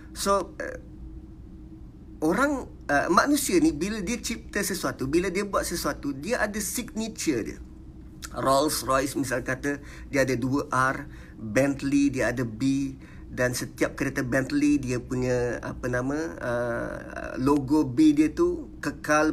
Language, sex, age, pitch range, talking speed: Malay, male, 50-69, 140-220 Hz, 135 wpm